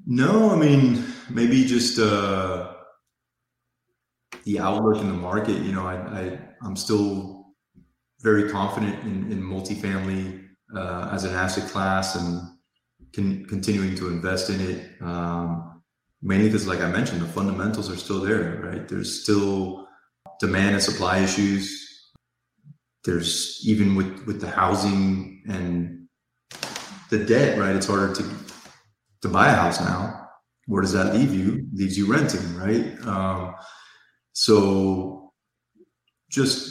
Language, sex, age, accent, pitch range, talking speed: English, male, 30-49, American, 95-110 Hz, 135 wpm